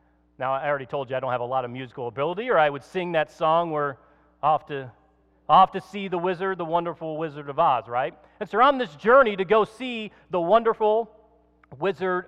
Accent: American